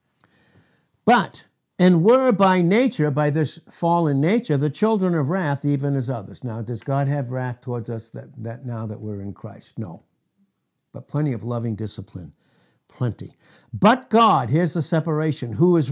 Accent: American